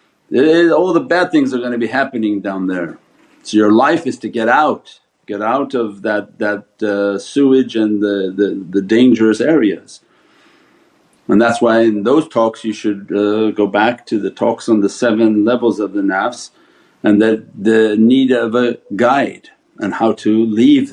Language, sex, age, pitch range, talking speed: English, male, 50-69, 105-125 Hz, 185 wpm